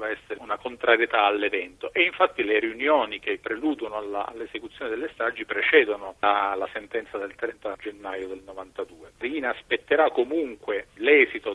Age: 40-59